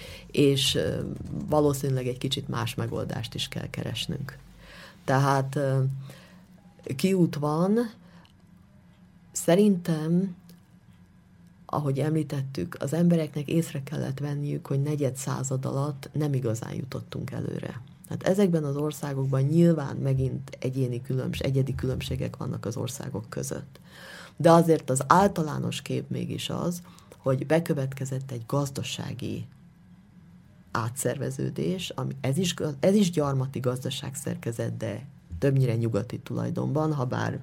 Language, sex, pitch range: Slovak, female, 125-160 Hz